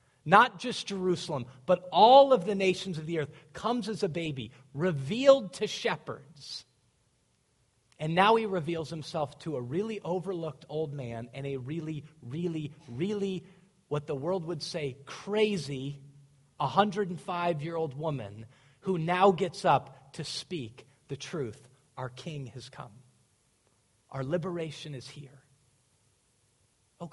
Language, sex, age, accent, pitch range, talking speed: English, male, 40-59, American, 130-175 Hz, 135 wpm